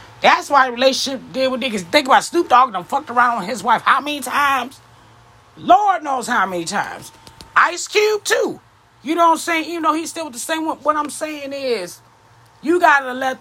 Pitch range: 215-295 Hz